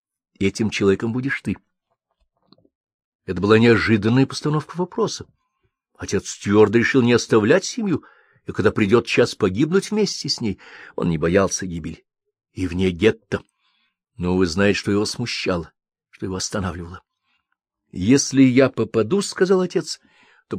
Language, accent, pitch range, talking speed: Russian, native, 95-135 Hz, 130 wpm